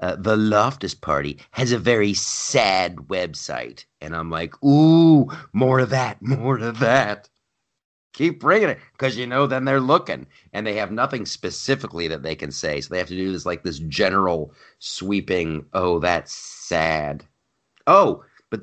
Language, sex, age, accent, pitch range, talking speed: English, male, 40-59, American, 95-130 Hz, 170 wpm